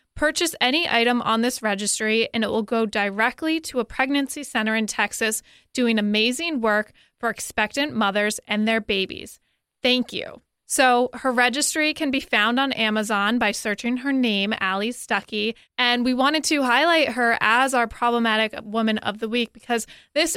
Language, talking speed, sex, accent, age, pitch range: English, 170 wpm, female, American, 20-39, 215-255 Hz